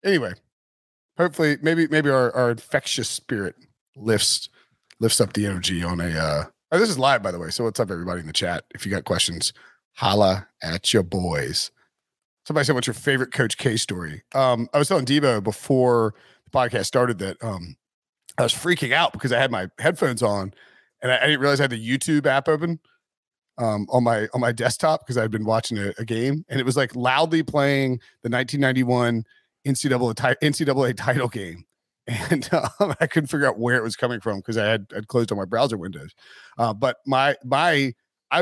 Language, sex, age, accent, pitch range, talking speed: English, male, 30-49, American, 115-145 Hz, 205 wpm